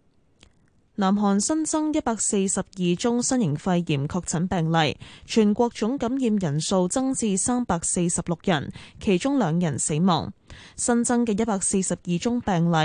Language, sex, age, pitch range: Chinese, female, 10-29, 175-235 Hz